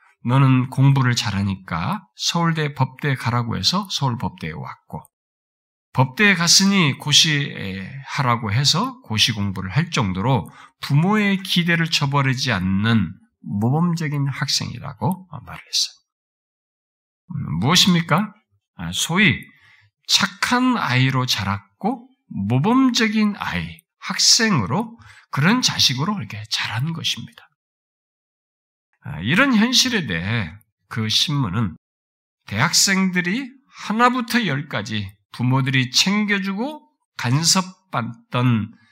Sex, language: male, Korean